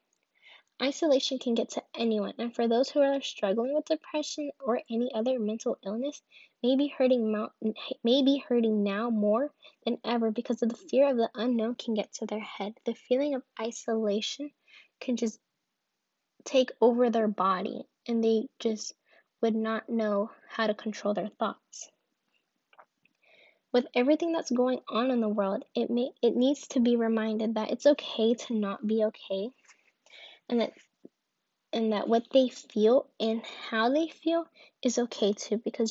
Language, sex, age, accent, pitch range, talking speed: English, female, 10-29, American, 220-260 Hz, 160 wpm